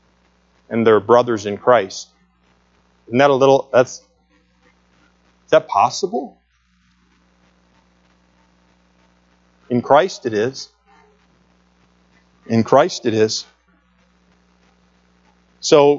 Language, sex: English, male